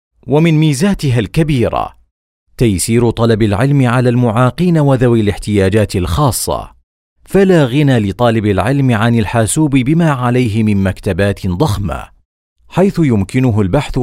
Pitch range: 100-140 Hz